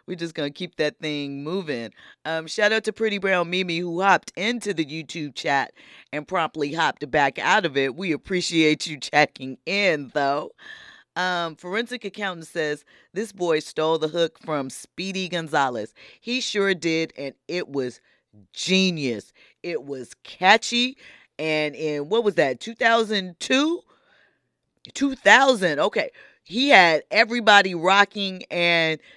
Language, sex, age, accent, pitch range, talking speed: English, female, 30-49, American, 155-225 Hz, 140 wpm